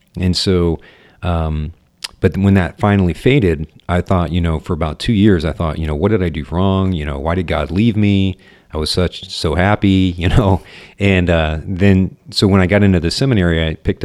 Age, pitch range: 40-59, 80-95 Hz